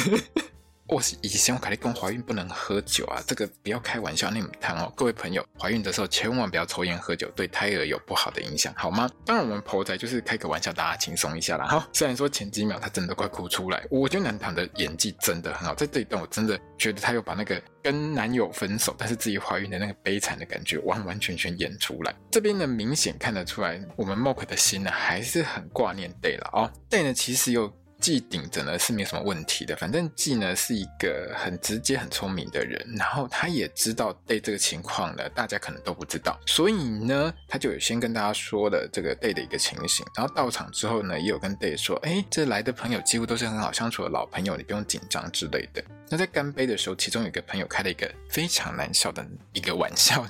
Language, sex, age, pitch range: Chinese, male, 20-39, 105-155 Hz